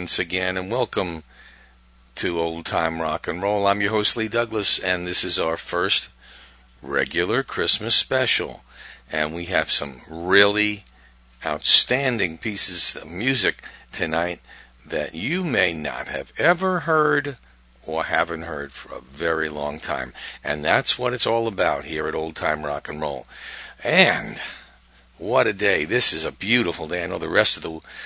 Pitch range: 75-110 Hz